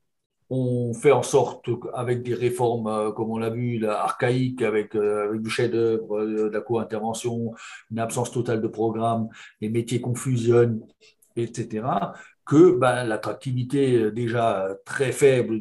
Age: 50-69